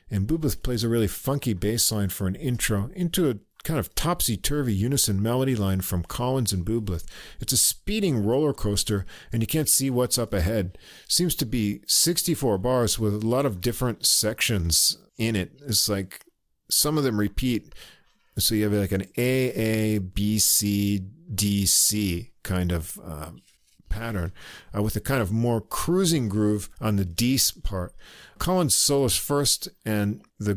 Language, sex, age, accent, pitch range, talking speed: English, male, 50-69, American, 100-130 Hz, 170 wpm